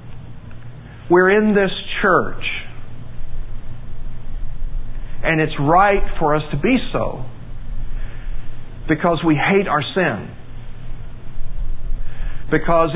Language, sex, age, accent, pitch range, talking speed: English, male, 50-69, American, 120-160 Hz, 85 wpm